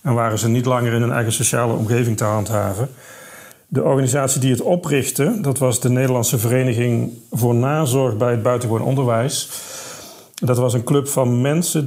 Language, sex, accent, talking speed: Dutch, male, Dutch, 170 wpm